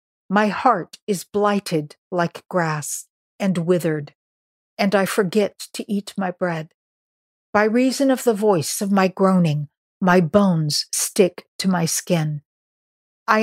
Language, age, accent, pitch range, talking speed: English, 50-69, American, 160-205 Hz, 135 wpm